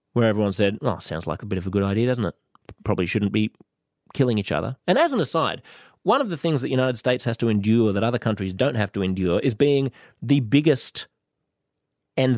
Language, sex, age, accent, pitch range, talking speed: English, male, 30-49, Australian, 110-135 Hz, 230 wpm